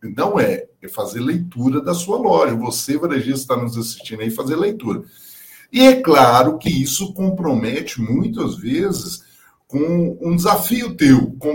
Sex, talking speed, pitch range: male, 155 wpm, 130-200 Hz